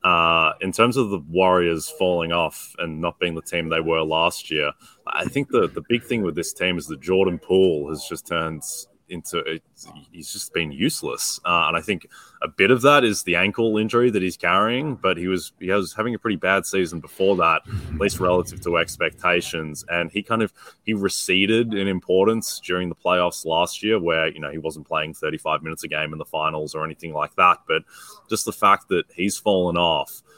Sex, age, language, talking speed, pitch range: male, 20-39, English, 215 wpm, 85-100 Hz